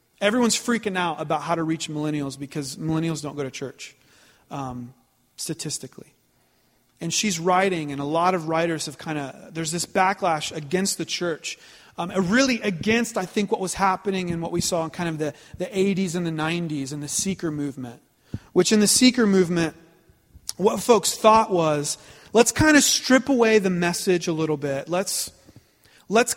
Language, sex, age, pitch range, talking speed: English, male, 30-49, 155-200 Hz, 180 wpm